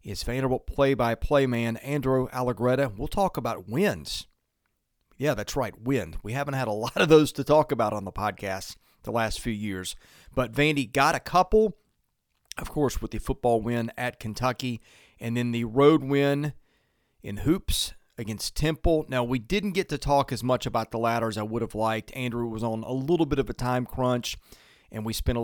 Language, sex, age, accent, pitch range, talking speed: English, male, 40-59, American, 115-145 Hz, 195 wpm